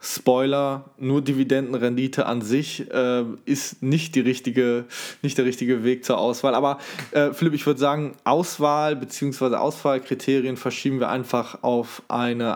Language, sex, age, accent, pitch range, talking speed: German, male, 20-39, German, 125-140 Hz, 135 wpm